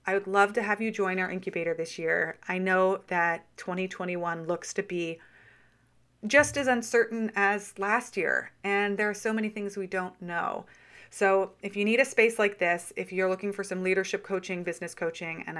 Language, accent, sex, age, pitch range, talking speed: English, American, female, 30-49, 175-215 Hz, 195 wpm